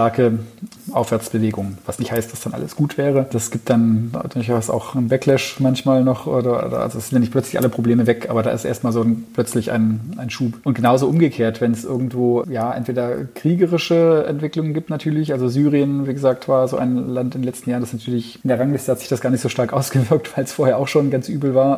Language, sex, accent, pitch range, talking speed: German, male, German, 120-130 Hz, 235 wpm